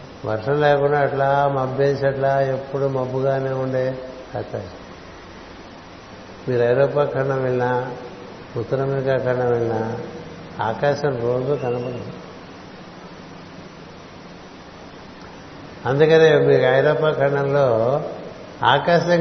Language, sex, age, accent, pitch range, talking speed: Telugu, male, 60-79, native, 115-145 Hz, 80 wpm